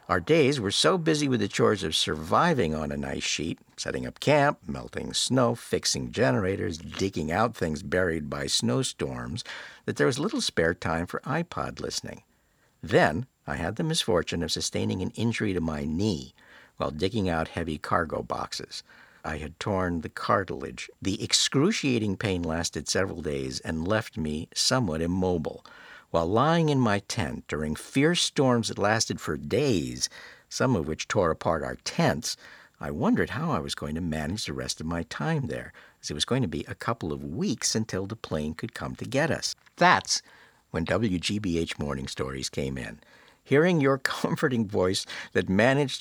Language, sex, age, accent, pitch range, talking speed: English, male, 60-79, American, 80-120 Hz, 175 wpm